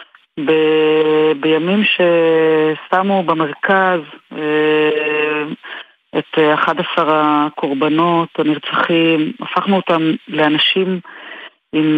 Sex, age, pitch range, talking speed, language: female, 30-49, 140-160 Hz, 65 wpm, Hebrew